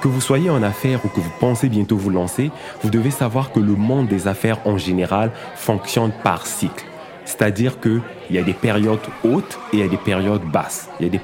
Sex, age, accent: male, 30-49, French